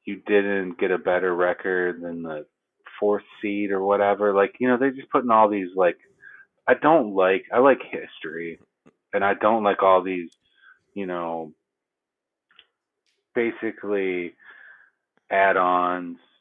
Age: 30-49